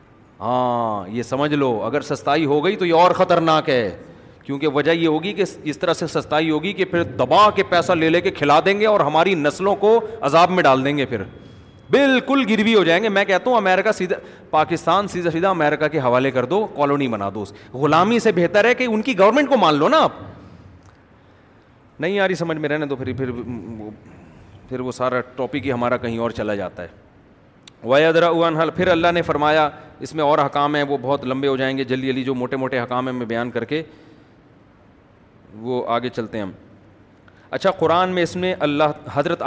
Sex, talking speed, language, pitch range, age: male, 205 wpm, Urdu, 125-170 Hz, 30-49